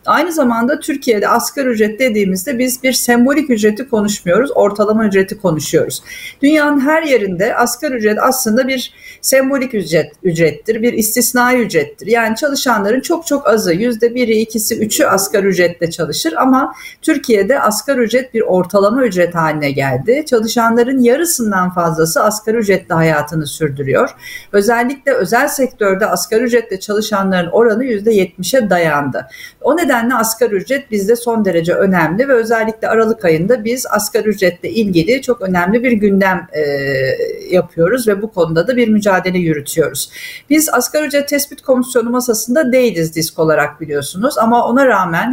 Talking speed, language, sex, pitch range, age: 140 wpm, Turkish, female, 190-255 Hz, 50-69